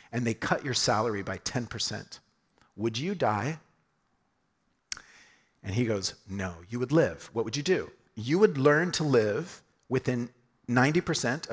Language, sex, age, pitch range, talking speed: English, male, 40-59, 120-175 Hz, 145 wpm